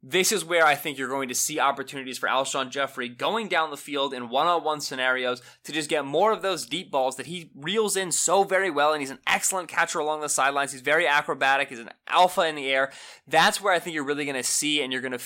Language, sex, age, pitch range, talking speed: English, male, 20-39, 135-170 Hz, 255 wpm